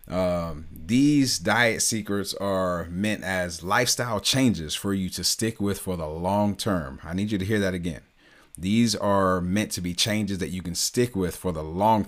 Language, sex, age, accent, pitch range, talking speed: English, male, 30-49, American, 90-105 Hz, 195 wpm